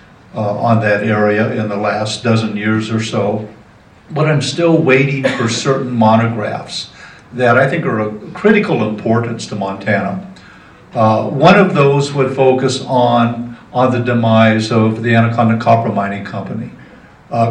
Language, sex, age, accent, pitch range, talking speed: English, male, 60-79, American, 110-140 Hz, 150 wpm